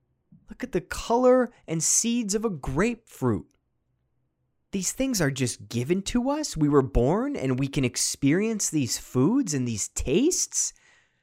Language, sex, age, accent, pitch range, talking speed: English, male, 20-39, American, 120-170 Hz, 150 wpm